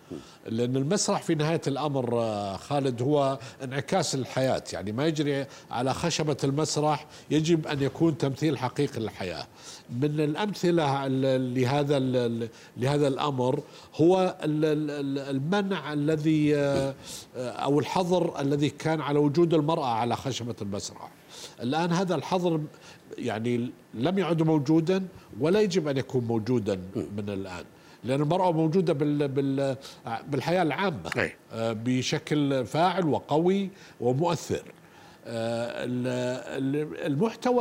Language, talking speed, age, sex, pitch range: Arabic, 100 wpm, 50-69, male, 130-165 Hz